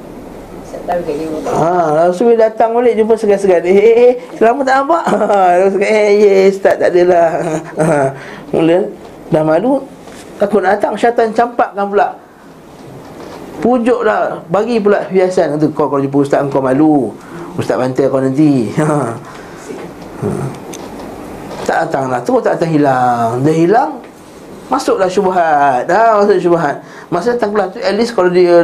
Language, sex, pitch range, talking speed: Malay, male, 155-205 Hz, 150 wpm